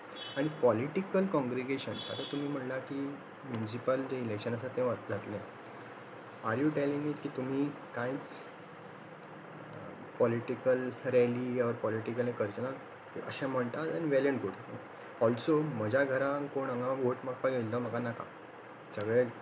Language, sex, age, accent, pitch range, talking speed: Marathi, male, 20-39, native, 120-140 Hz, 115 wpm